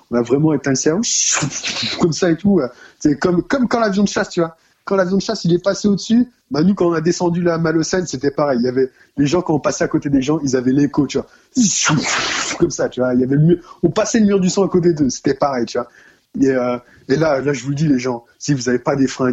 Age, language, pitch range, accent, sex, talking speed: 20-39, French, 145-220 Hz, French, male, 290 wpm